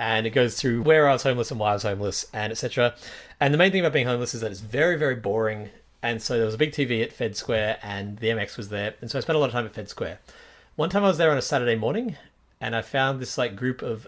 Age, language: 30-49, English